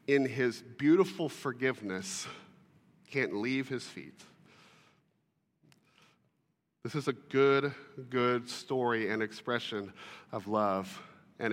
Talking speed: 100 wpm